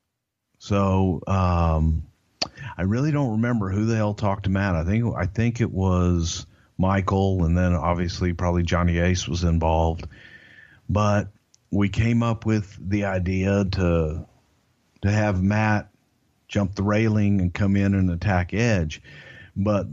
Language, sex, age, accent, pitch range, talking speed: English, male, 50-69, American, 90-105 Hz, 145 wpm